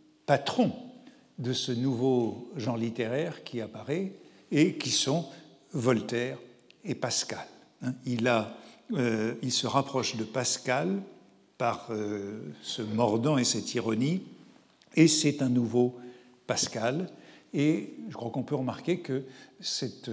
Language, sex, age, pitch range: French, male, 60-79, 120-150 Hz